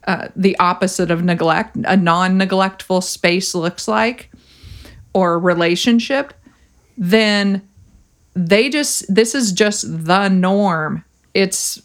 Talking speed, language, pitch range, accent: 105 wpm, English, 170-210 Hz, American